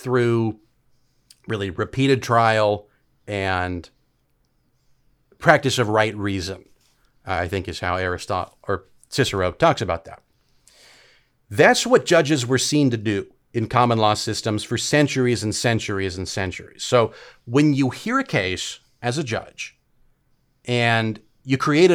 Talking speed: 130 wpm